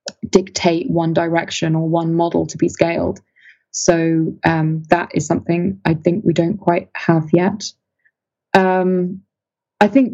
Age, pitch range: 20-39, 165-190 Hz